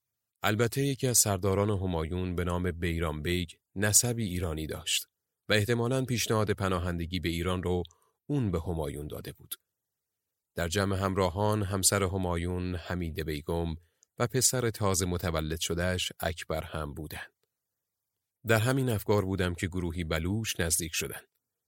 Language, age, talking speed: Persian, 30-49, 135 wpm